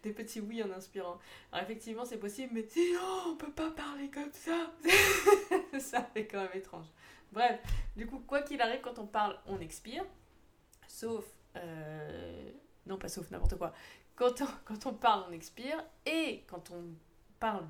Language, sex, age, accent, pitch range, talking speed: French, female, 20-39, French, 180-245 Hz, 175 wpm